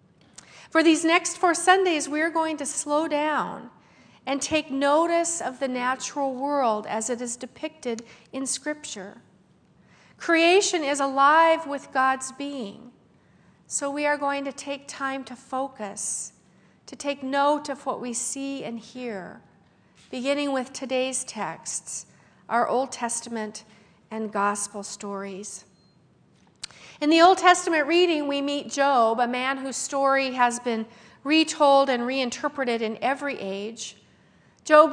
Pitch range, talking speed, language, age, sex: 225-285 Hz, 135 wpm, English, 50-69, female